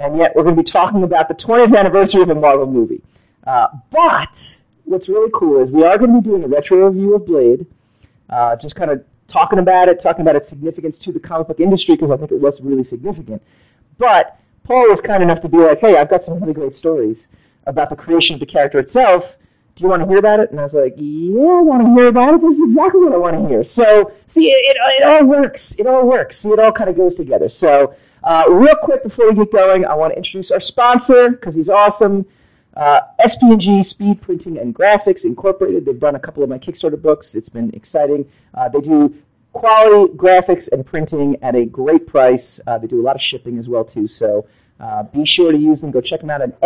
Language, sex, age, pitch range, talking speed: English, male, 40-59, 145-215 Hz, 240 wpm